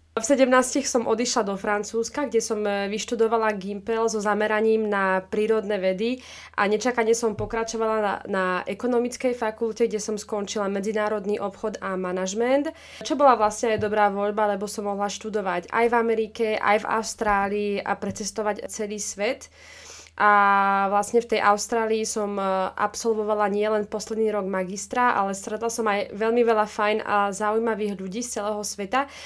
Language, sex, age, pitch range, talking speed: Slovak, female, 20-39, 210-235 Hz, 150 wpm